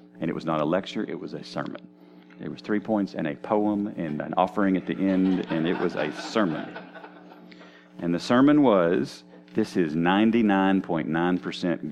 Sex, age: male, 40-59